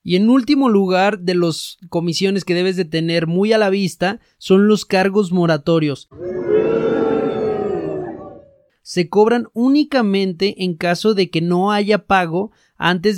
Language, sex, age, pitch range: Spanish, male, 30-49, 175-220 Hz